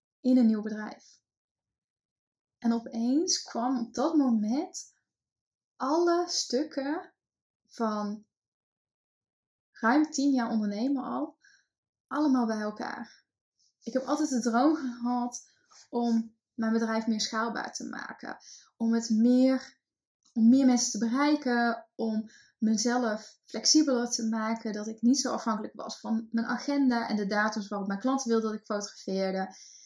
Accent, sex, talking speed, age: Dutch, female, 135 wpm, 10-29